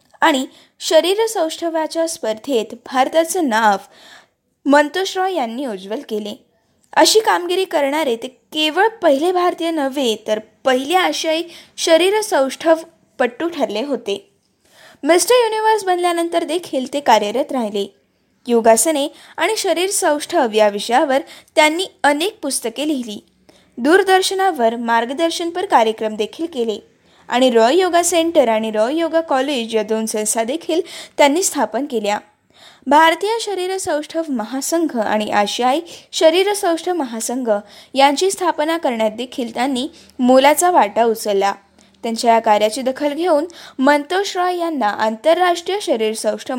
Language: Marathi